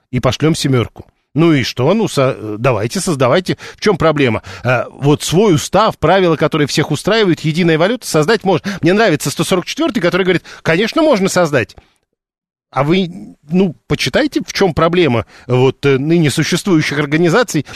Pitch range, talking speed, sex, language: 140-180 Hz, 150 wpm, male, Russian